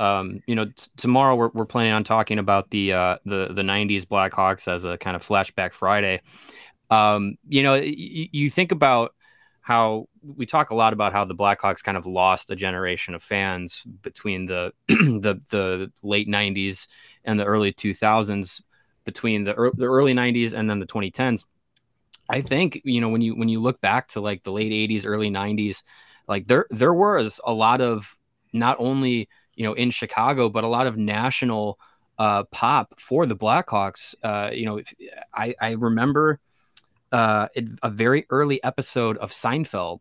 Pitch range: 105-130 Hz